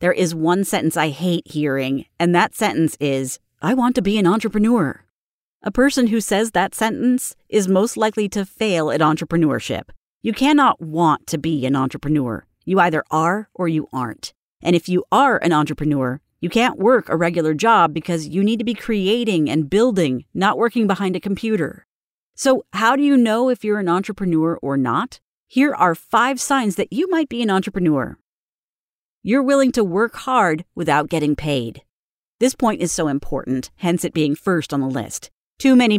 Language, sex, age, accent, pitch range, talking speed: English, female, 40-59, American, 155-220 Hz, 185 wpm